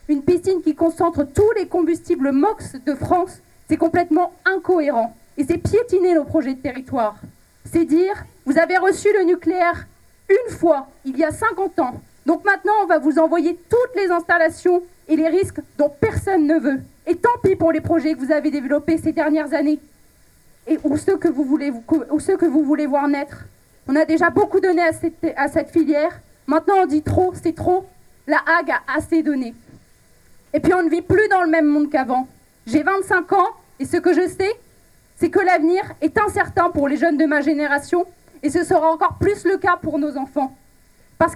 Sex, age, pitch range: female, 30-49, 305-355 Hz